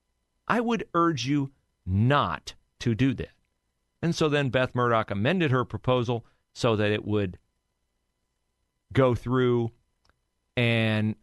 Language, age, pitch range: English, 40-59, 110-160 Hz